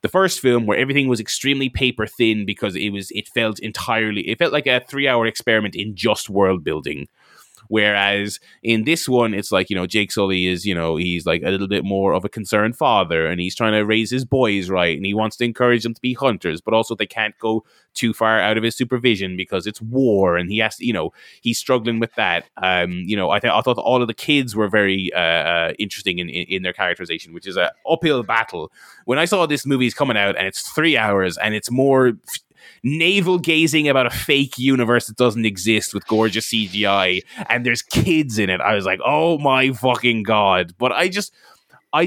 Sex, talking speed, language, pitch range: male, 230 wpm, English, 105-135 Hz